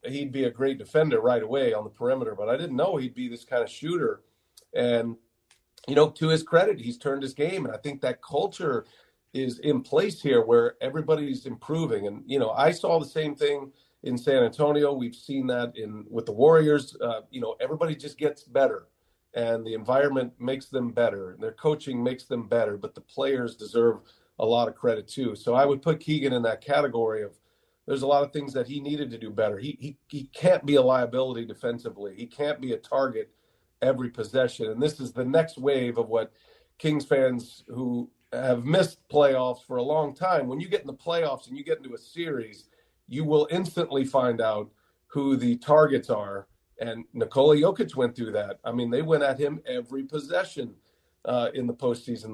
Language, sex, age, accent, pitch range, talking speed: English, male, 40-59, American, 120-150 Hz, 205 wpm